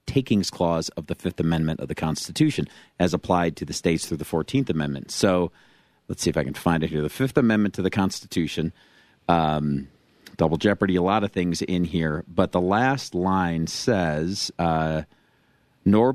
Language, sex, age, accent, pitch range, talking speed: English, male, 40-59, American, 85-105 Hz, 180 wpm